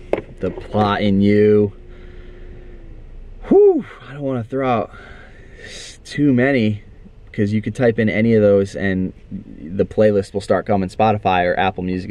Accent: American